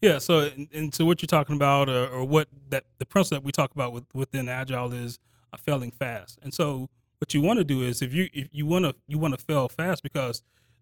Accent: American